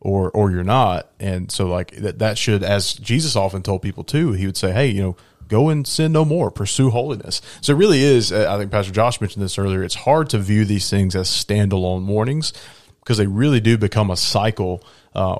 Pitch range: 95-115 Hz